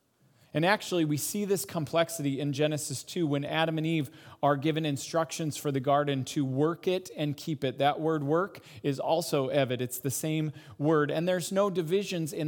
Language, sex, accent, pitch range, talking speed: English, male, American, 140-165 Hz, 190 wpm